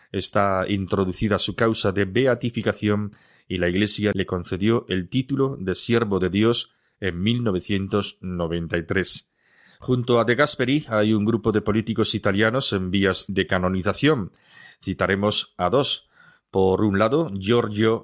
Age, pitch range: 30-49, 95-115 Hz